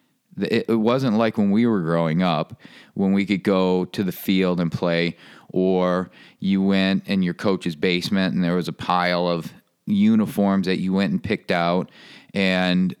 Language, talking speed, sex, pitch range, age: English, 175 wpm, male, 90-105 Hz, 40-59